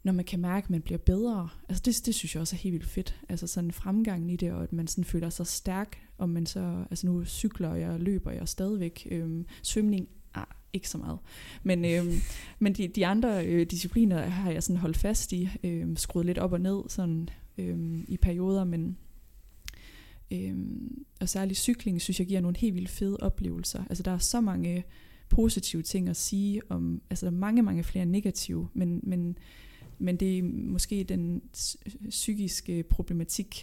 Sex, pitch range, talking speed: female, 170-195 Hz, 195 wpm